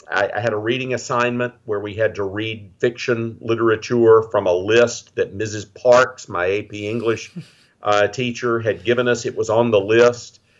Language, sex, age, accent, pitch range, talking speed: English, male, 50-69, American, 105-135 Hz, 180 wpm